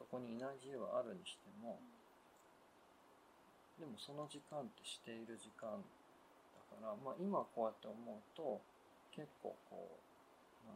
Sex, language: male, Japanese